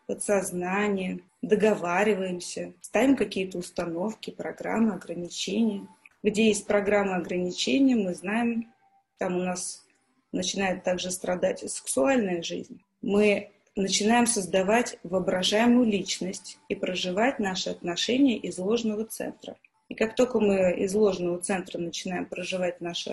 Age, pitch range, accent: 20-39, 185-230 Hz, native